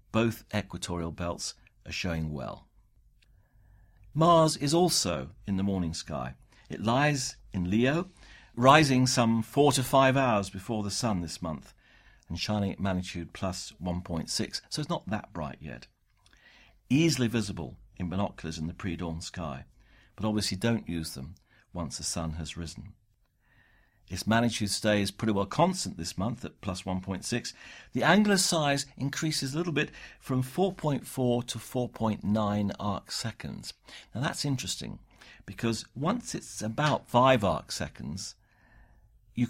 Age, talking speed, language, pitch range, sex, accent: 50-69, 140 wpm, English, 90-120 Hz, male, British